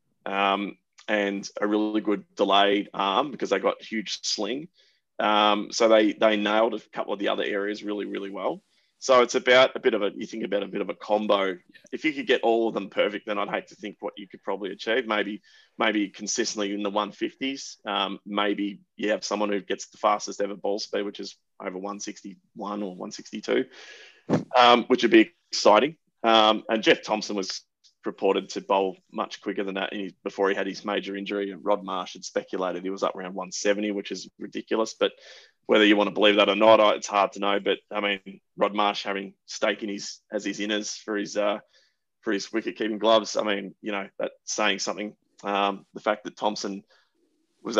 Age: 20-39